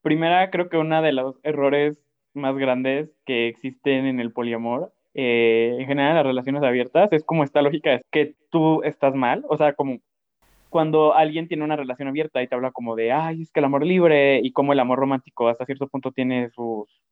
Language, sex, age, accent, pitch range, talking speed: Spanish, male, 20-39, Mexican, 135-160 Hz, 205 wpm